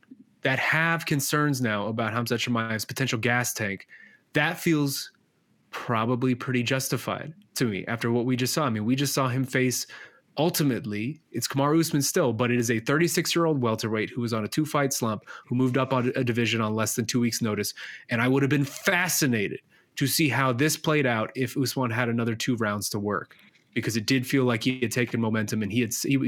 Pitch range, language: 115-145 Hz, English